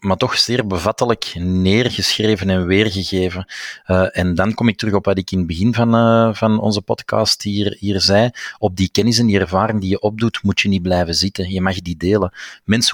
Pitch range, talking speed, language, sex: 95-105 Hz, 210 wpm, Dutch, male